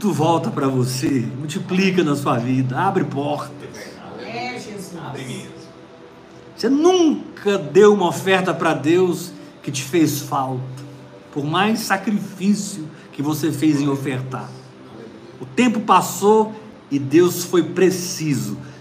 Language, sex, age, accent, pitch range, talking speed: Portuguese, male, 50-69, Brazilian, 135-220 Hz, 110 wpm